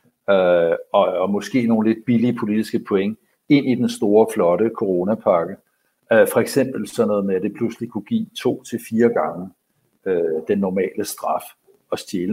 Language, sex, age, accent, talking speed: Danish, male, 60-79, native, 160 wpm